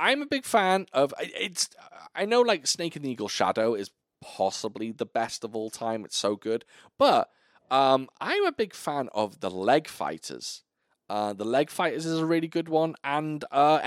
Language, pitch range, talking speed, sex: English, 105-150 Hz, 195 wpm, male